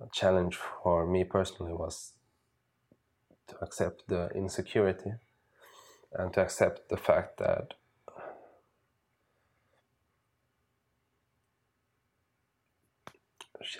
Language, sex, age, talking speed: Finnish, male, 20-39, 70 wpm